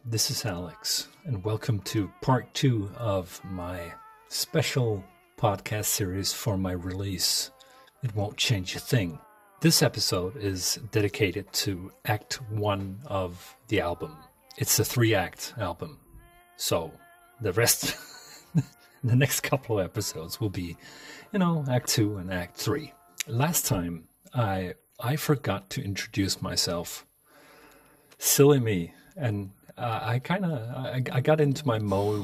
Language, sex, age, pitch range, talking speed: English, male, 40-59, 100-150 Hz, 135 wpm